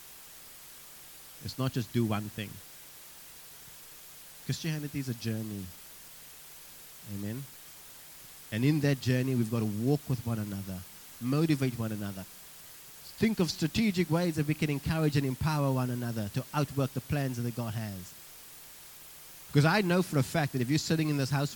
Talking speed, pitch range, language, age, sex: 160 wpm, 120-155 Hz, English, 30-49, male